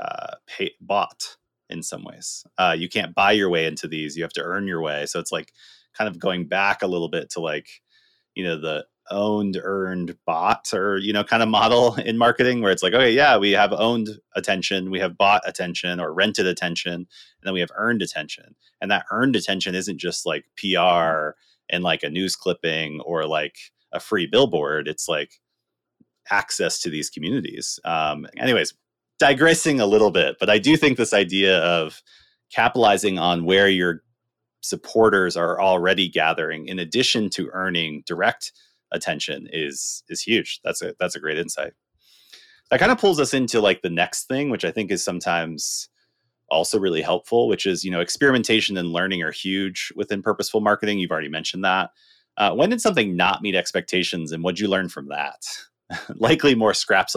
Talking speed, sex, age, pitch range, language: 185 wpm, male, 30-49, 85-115 Hz, English